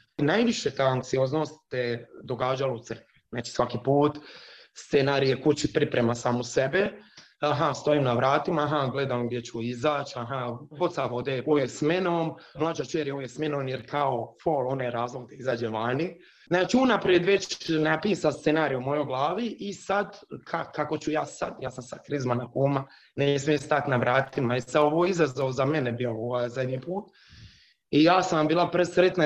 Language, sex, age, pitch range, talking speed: Croatian, male, 30-49, 130-170 Hz, 165 wpm